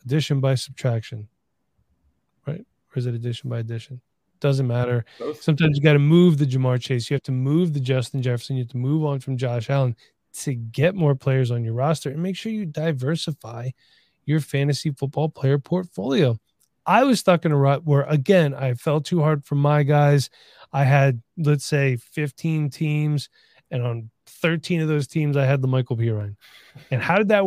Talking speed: 190 wpm